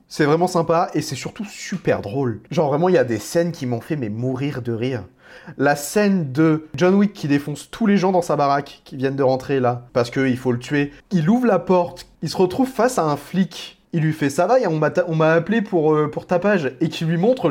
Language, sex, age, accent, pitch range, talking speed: French, male, 20-39, French, 135-180 Hz, 260 wpm